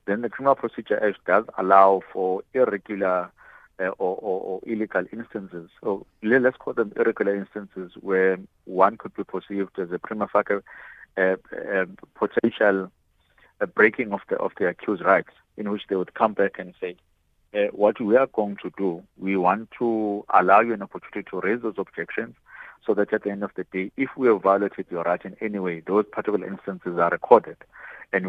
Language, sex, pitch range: English, male, 95-110 Hz